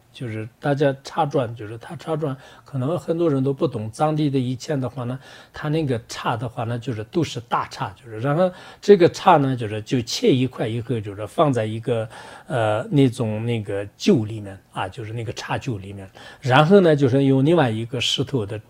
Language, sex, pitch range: English, male, 110-145 Hz